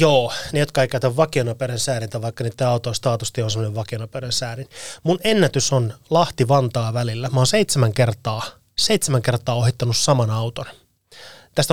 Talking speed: 145 wpm